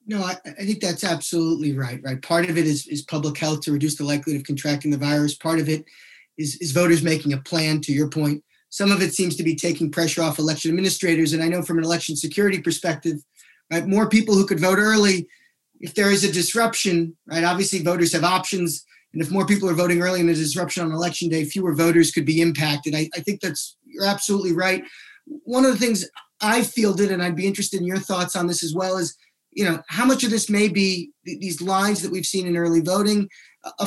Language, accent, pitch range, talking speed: English, American, 165-205 Hz, 235 wpm